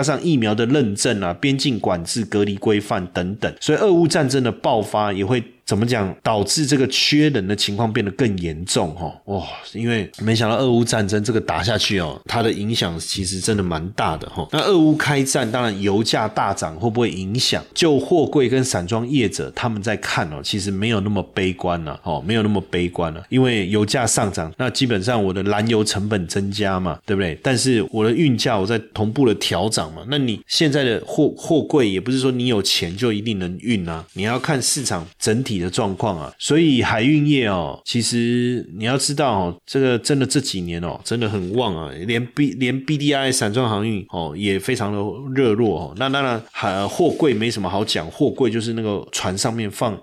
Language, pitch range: Chinese, 100-125 Hz